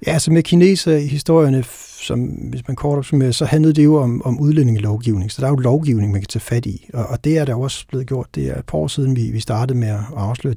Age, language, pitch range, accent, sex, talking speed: 60-79, Danish, 110-135 Hz, native, male, 275 wpm